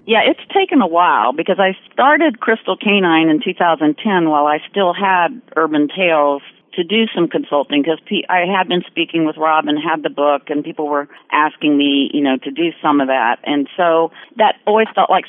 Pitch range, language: 140-170 Hz, English